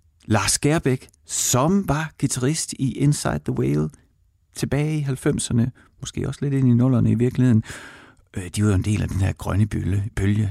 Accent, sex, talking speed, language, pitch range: native, male, 185 wpm, Danish, 100-135 Hz